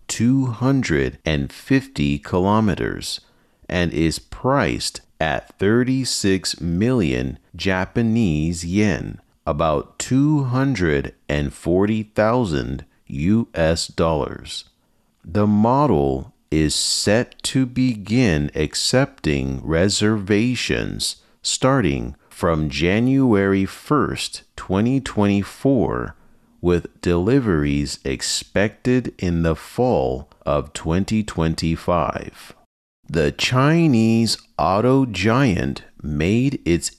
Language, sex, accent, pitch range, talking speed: English, male, American, 75-120 Hz, 65 wpm